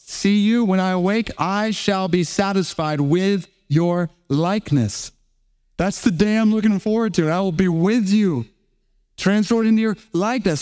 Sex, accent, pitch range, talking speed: male, American, 150-200 Hz, 160 wpm